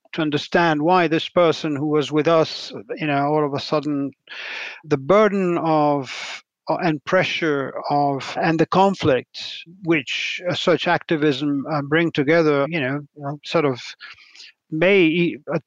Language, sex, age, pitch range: English, male, 50-69, 145-170 Hz